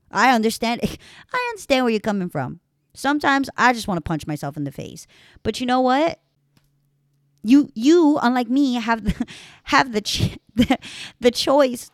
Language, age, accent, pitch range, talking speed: English, 30-49, American, 155-230 Hz, 170 wpm